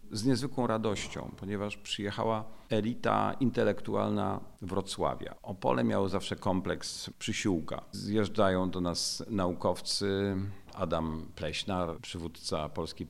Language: Polish